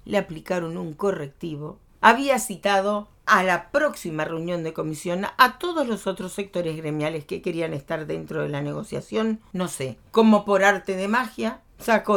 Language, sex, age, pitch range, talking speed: Spanish, female, 40-59, 160-230 Hz, 165 wpm